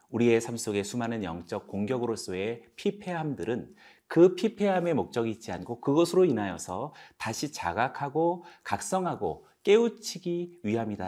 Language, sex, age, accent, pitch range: Korean, male, 40-59, native, 110-165 Hz